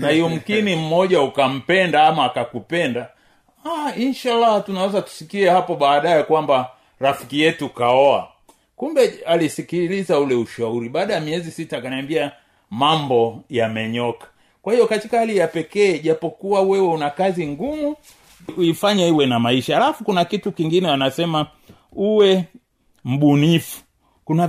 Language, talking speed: Swahili, 125 wpm